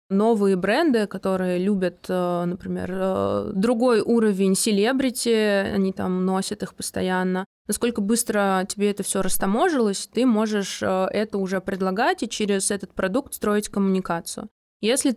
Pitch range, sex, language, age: 185-215 Hz, female, Russian, 20-39